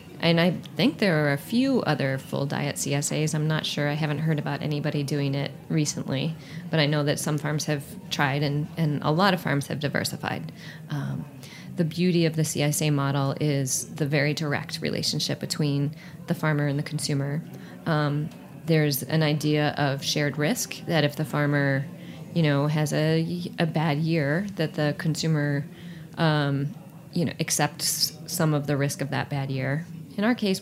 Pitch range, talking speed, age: 145-165 Hz, 180 wpm, 30-49